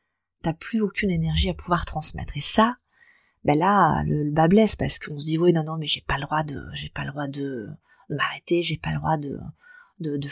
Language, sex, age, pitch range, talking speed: French, female, 30-49, 150-195 Hz, 245 wpm